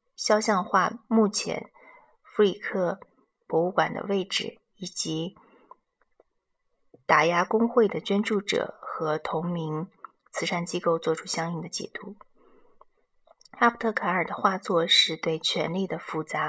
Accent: native